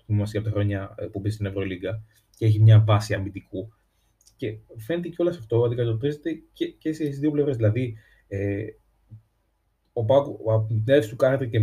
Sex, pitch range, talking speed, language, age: male, 110-130 Hz, 175 wpm, Greek, 30-49